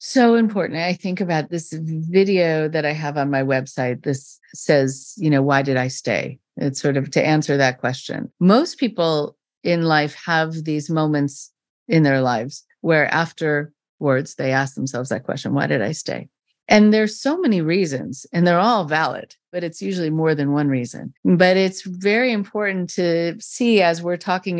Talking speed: 180 wpm